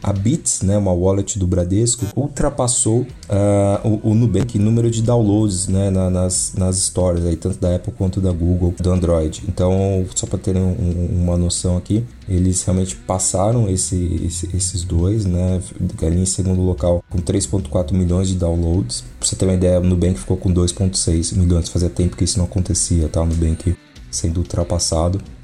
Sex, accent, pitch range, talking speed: male, Brazilian, 90-100 Hz, 175 wpm